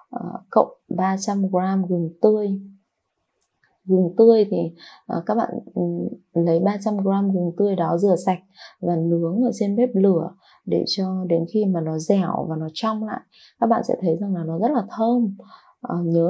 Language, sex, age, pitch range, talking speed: Vietnamese, female, 20-39, 170-215 Hz, 160 wpm